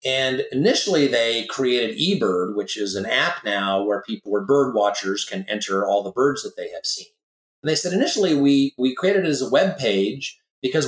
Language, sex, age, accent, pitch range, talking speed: English, male, 30-49, American, 105-145 Hz, 205 wpm